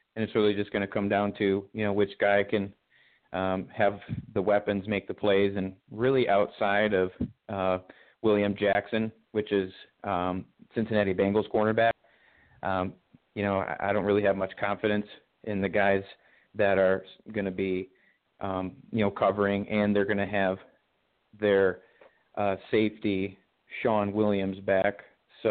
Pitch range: 95-110 Hz